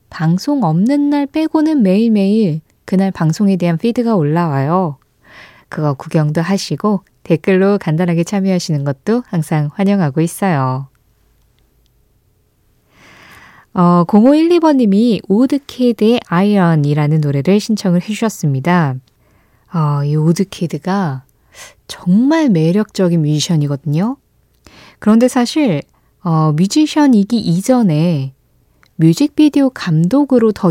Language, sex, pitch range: Korean, female, 155-220 Hz